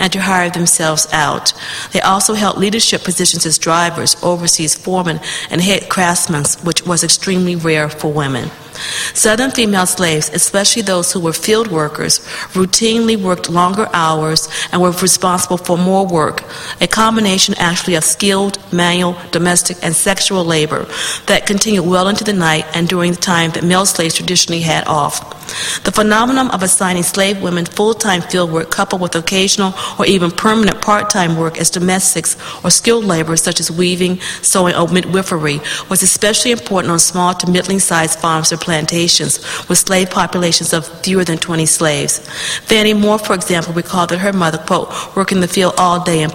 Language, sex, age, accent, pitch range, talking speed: English, female, 40-59, American, 165-190 Hz, 170 wpm